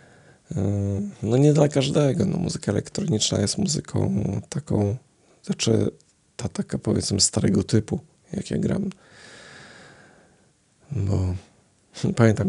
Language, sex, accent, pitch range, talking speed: Polish, male, native, 95-110 Hz, 100 wpm